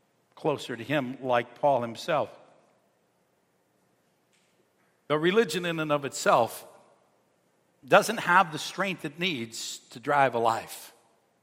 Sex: male